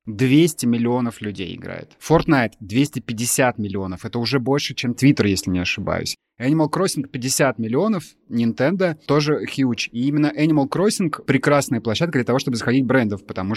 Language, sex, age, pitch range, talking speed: Russian, male, 20-39, 105-135 Hz, 150 wpm